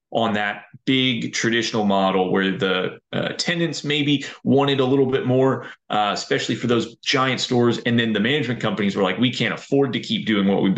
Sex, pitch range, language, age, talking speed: male, 100-125 Hz, English, 30-49, 200 wpm